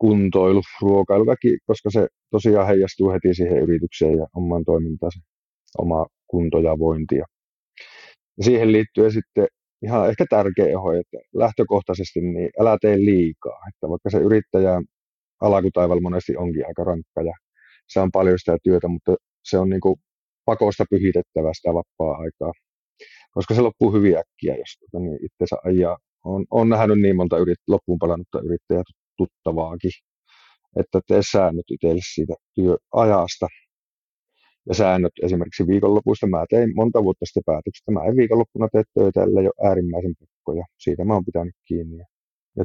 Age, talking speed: 30-49, 140 wpm